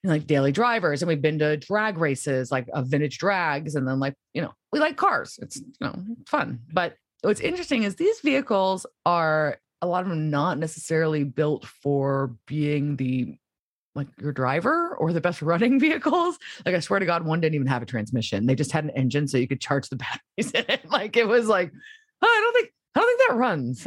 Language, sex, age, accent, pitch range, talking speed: English, female, 30-49, American, 140-195 Hz, 220 wpm